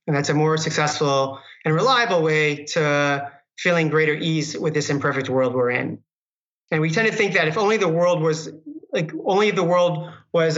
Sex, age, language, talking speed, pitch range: male, 30-49, English, 195 wpm, 150-180 Hz